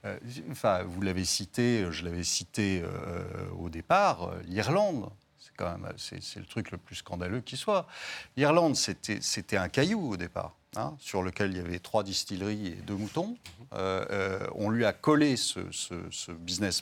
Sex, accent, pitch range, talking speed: male, French, 90-115 Hz, 180 wpm